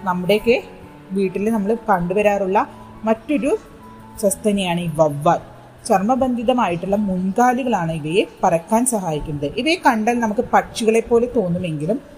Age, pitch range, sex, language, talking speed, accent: 30-49, 170-245 Hz, female, Malayalam, 95 wpm, native